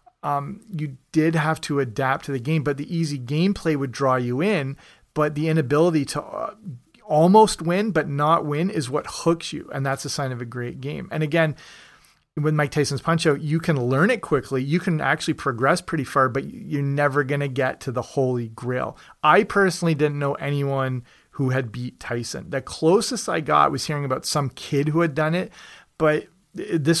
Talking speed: 200 wpm